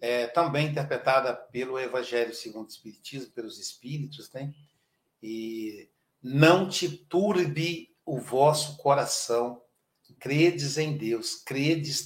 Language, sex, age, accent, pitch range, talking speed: Portuguese, male, 60-79, Brazilian, 145-195 Hz, 105 wpm